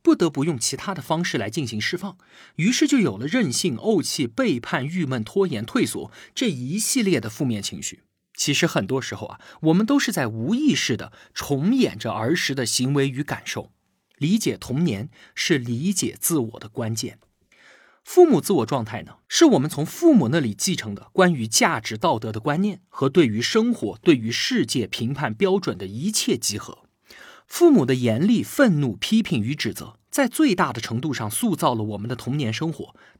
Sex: male